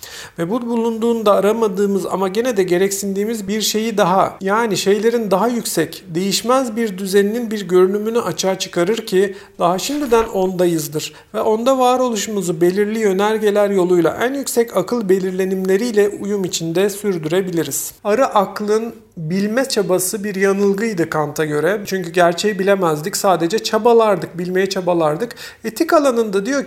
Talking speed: 130 wpm